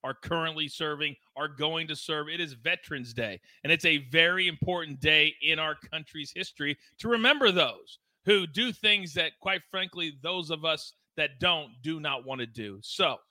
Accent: American